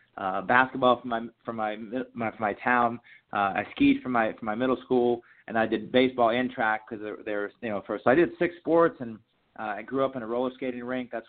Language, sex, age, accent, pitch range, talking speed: English, male, 30-49, American, 115-125 Hz, 245 wpm